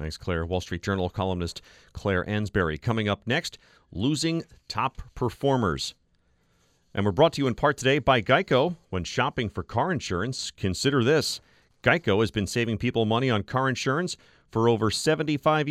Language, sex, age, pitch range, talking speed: English, male, 40-59, 100-140 Hz, 165 wpm